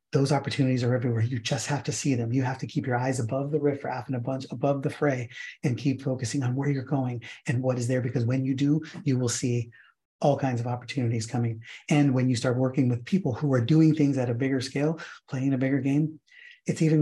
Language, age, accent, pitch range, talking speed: English, 30-49, American, 125-145 Hz, 235 wpm